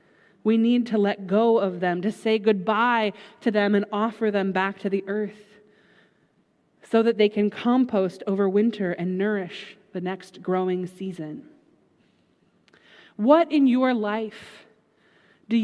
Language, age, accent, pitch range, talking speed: English, 30-49, American, 195-250 Hz, 140 wpm